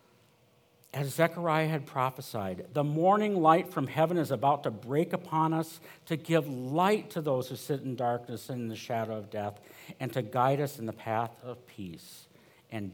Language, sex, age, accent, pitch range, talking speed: English, male, 50-69, American, 115-150 Hz, 185 wpm